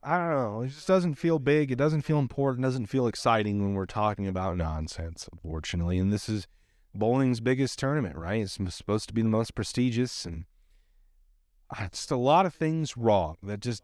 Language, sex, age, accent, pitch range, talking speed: English, male, 30-49, American, 105-145 Hz, 200 wpm